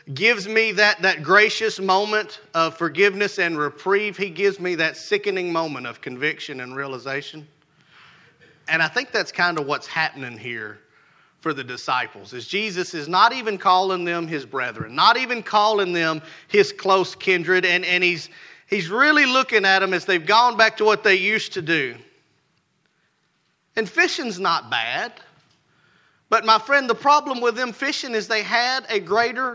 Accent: American